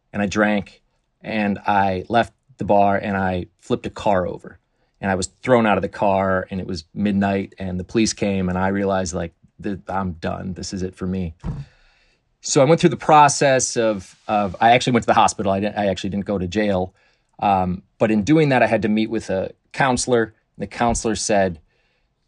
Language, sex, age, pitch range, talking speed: English, male, 30-49, 95-120 Hz, 215 wpm